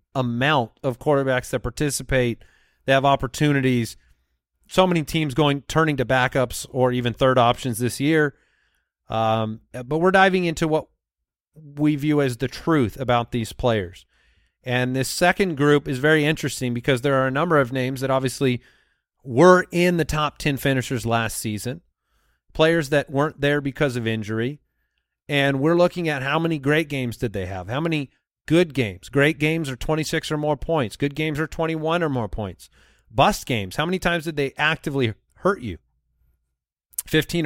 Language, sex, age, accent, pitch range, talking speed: English, male, 30-49, American, 120-155 Hz, 170 wpm